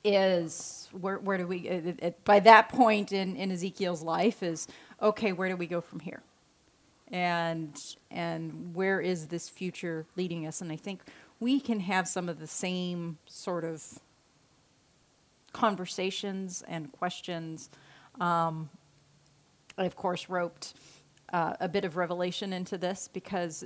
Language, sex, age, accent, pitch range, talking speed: English, female, 30-49, American, 170-200 Hz, 145 wpm